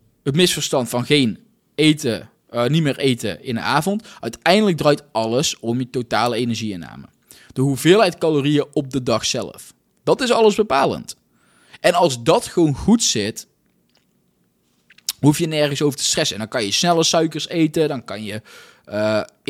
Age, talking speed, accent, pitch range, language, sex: 20-39, 165 wpm, Dutch, 120-180 Hz, Dutch, male